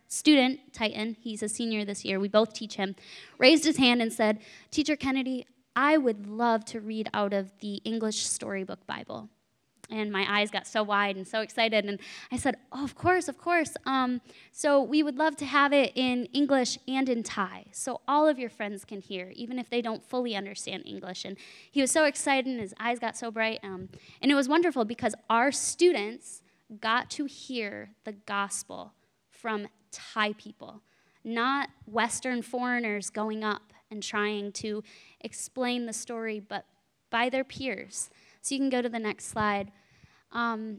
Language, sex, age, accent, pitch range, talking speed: English, female, 10-29, American, 210-255 Hz, 180 wpm